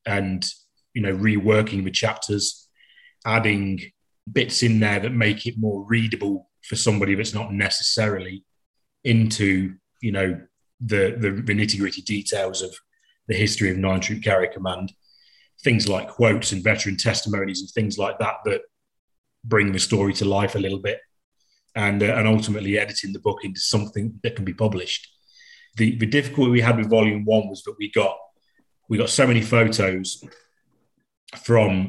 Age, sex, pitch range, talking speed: 30-49, male, 95-115 Hz, 160 wpm